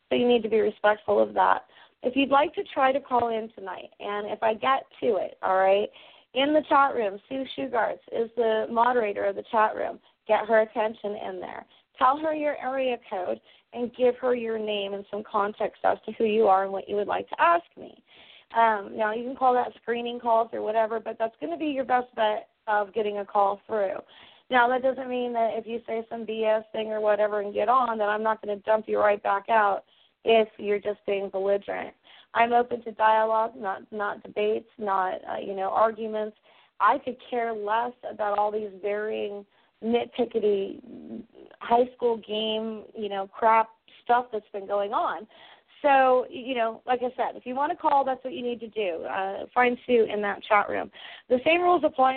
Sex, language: female, English